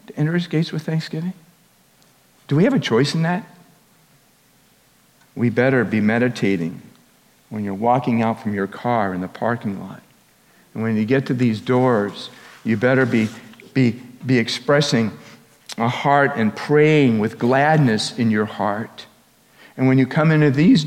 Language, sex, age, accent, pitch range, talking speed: English, male, 50-69, American, 120-165 Hz, 160 wpm